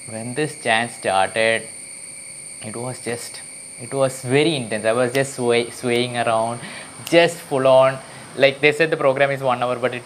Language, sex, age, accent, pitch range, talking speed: English, male, 20-39, Indian, 115-140 Hz, 180 wpm